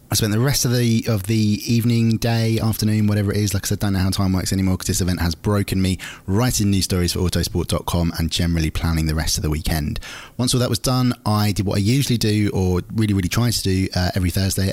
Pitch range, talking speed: 85-105 Hz, 255 wpm